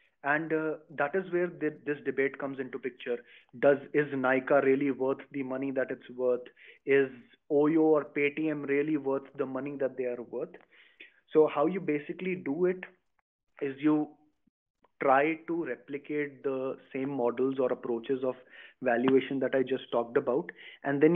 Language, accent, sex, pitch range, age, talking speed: English, Indian, male, 130-150 Hz, 20-39, 165 wpm